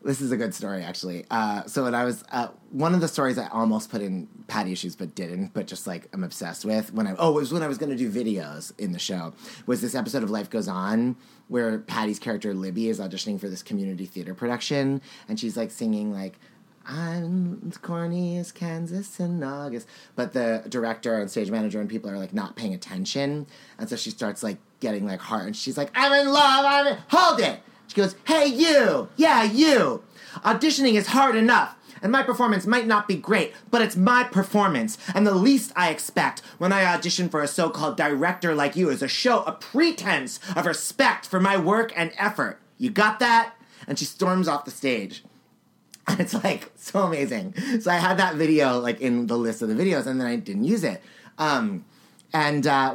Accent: American